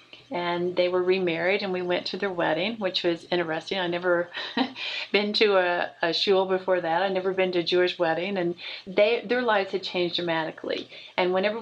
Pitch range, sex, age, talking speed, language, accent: 180-210 Hz, female, 40-59, 190 wpm, English, American